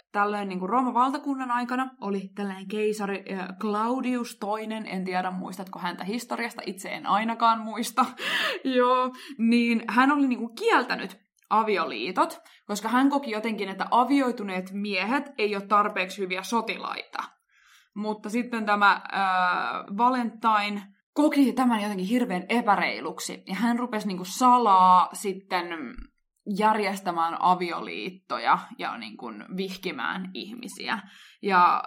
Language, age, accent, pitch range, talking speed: Finnish, 20-39, native, 190-245 Hz, 115 wpm